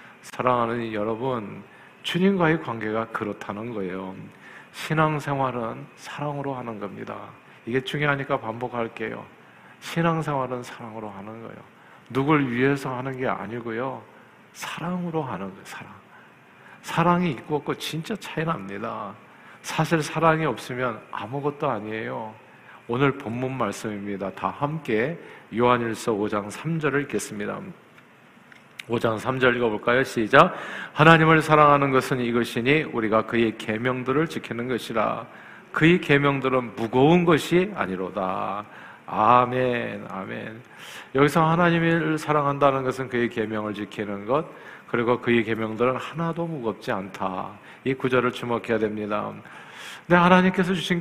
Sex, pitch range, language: male, 115-150 Hz, Korean